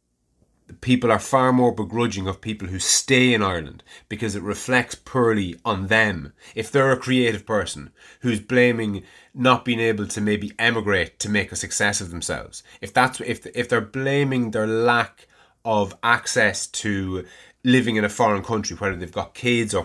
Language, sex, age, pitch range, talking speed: English, male, 30-49, 95-125 Hz, 170 wpm